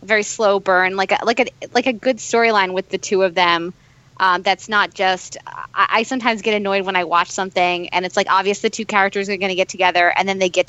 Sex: female